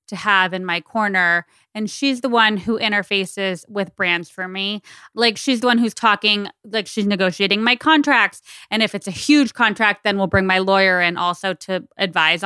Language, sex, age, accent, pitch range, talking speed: English, female, 20-39, American, 185-215 Hz, 195 wpm